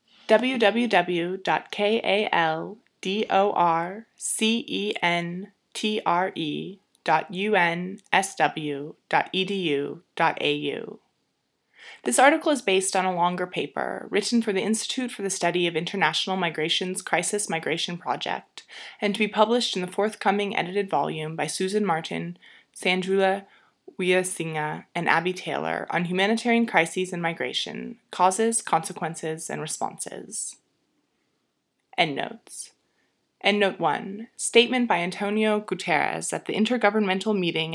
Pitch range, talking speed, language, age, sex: 170-210 Hz, 95 wpm, English, 20-39, female